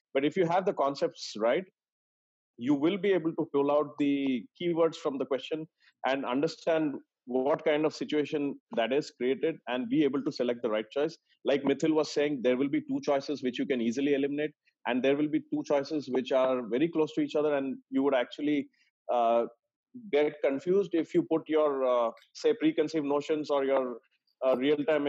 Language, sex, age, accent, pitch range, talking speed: English, male, 40-59, Indian, 130-155 Hz, 195 wpm